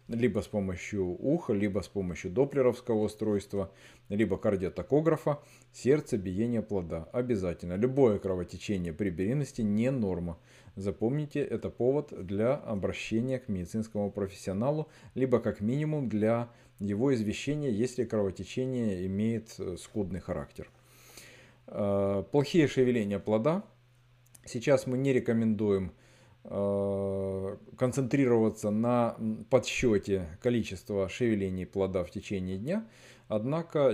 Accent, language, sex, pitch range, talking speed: native, Russian, male, 100-130 Hz, 100 wpm